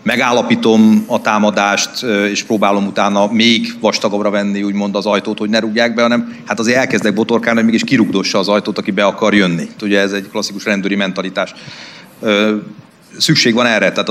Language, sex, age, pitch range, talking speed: Hungarian, male, 40-59, 100-115 Hz, 170 wpm